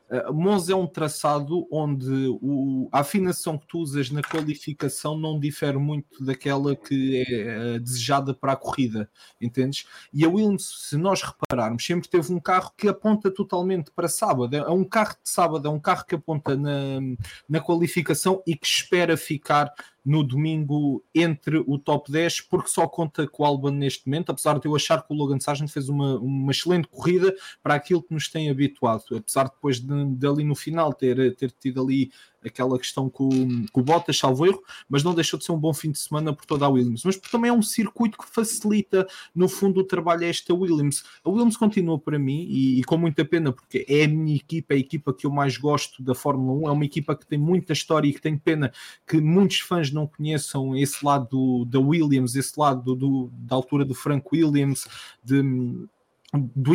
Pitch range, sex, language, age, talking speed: 135-170 Hz, male, English, 20-39, 200 wpm